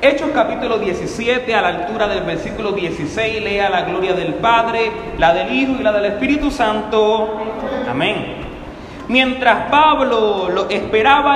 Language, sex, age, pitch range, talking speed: Spanish, male, 30-49, 210-275 Hz, 145 wpm